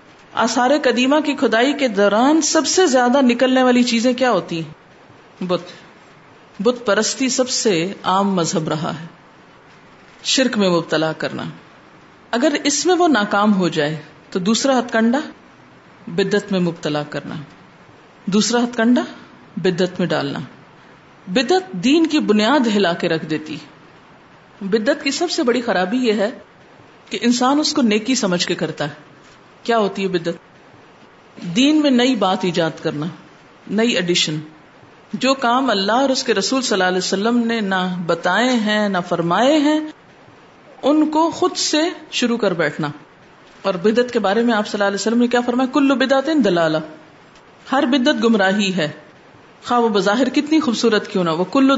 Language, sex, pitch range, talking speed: Urdu, female, 180-260 Hz, 160 wpm